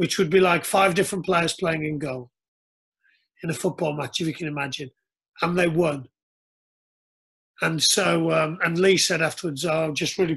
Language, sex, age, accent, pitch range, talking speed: English, male, 40-59, British, 155-185 Hz, 185 wpm